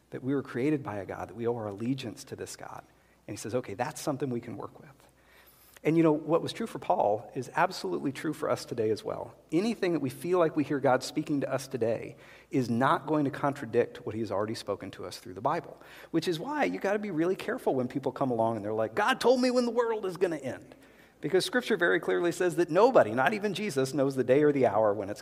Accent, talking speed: American, 265 wpm